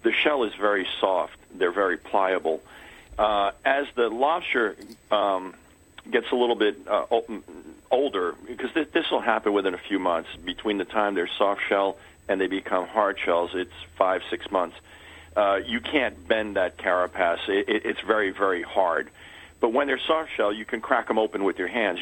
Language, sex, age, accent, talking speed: English, male, 50-69, American, 170 wpm